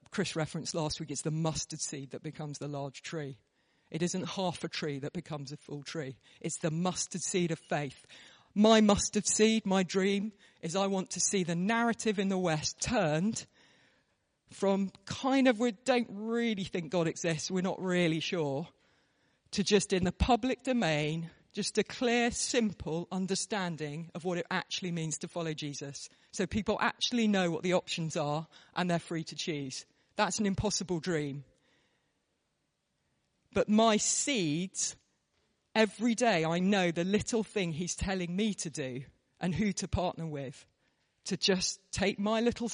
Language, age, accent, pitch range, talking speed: English, 40-59, British, 160-205 Hz, 165 wpm